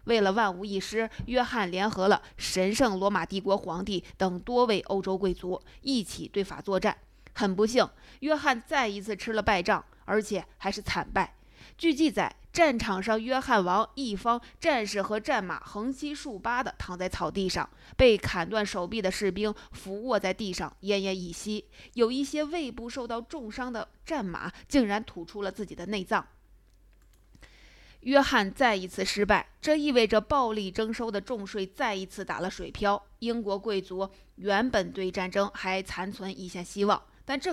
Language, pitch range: Chinese, 190-235 Hz